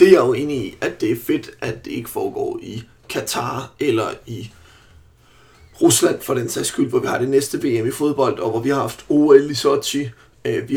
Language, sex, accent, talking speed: Danish, male, native, 225 wpm